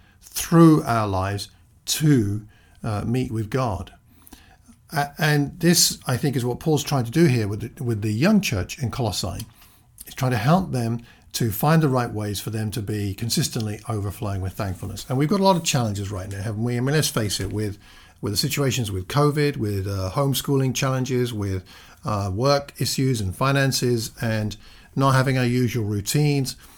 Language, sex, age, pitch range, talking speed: English, male, 50-69, 105-135 Hz, 185 wpm